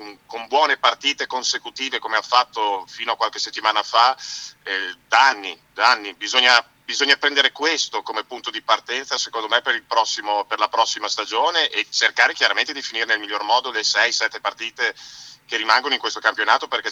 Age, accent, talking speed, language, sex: 40-59, native, 175 wpm, Italian, male